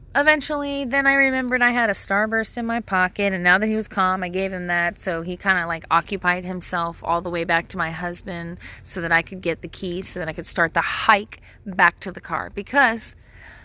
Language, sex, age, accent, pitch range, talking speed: English, female, 30-49, American, 170-220 Hz, 240 wpm